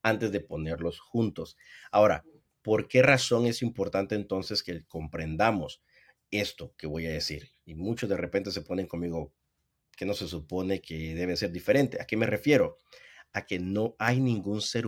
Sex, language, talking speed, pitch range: male, Spanish, 175 wpm, 95-125 Hz